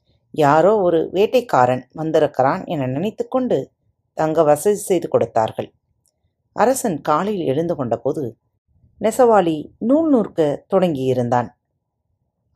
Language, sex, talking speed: Tamil, female, 90 wpm